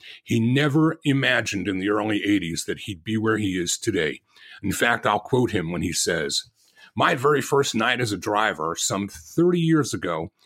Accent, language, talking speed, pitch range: American, English, 190 wpm, 105-140 Hz